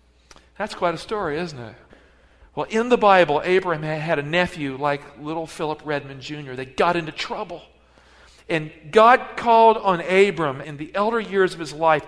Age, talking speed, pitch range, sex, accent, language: 50-69, 175 wpm, 150-210 Hz, male, American, English